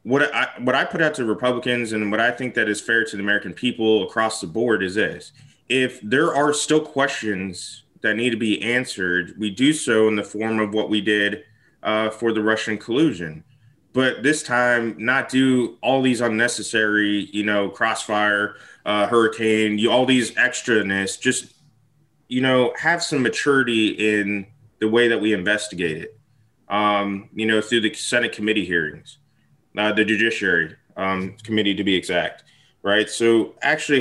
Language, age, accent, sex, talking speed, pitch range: English, 20-39, American, male, 175 wpm, 105-125 Hz